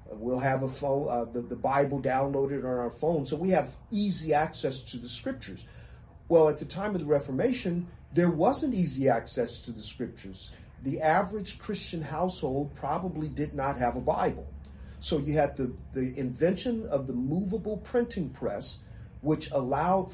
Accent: American